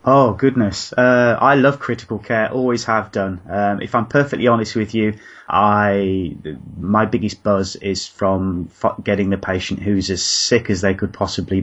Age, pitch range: 30-49, 85-100 Hz